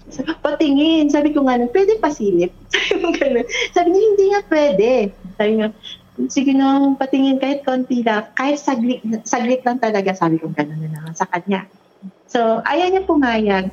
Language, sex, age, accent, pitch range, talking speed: Filipino, female, 40-59, native, 200-275 Hz, 180 wpm